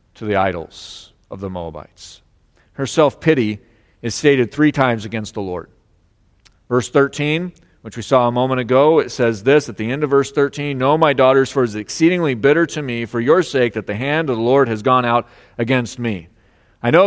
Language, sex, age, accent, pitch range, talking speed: English, male, 40-59, American, 110-155 Hz, 205 wpm